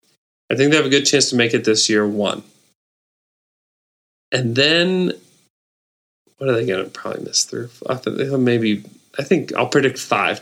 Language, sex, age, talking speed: English, male, 30-49, 175 wpm